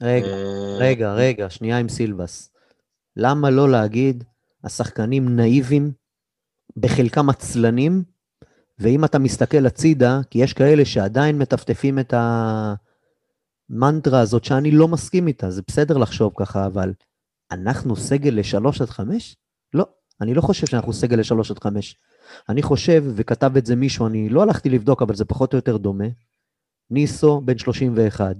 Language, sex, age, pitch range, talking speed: Hebrew, male, 30-49, 115-145 Hz, 140 wpm